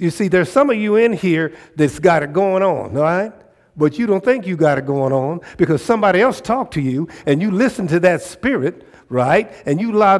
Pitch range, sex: 155-205 Hz, male